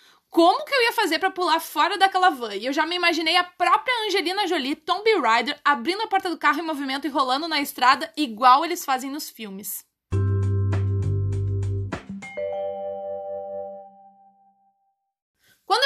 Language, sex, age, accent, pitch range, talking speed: Portuguese, female, 20-39, Brazilian, 265-380 Hz, 150 wpm